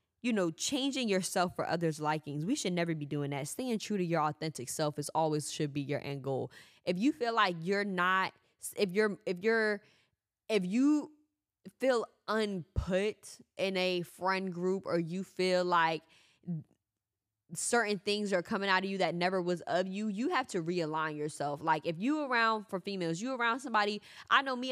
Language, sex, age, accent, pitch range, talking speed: English, female, 20-39, American, 160-200 Hz, 185 wpm